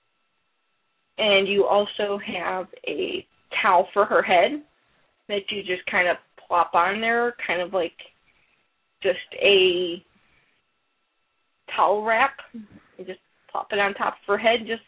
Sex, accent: female, American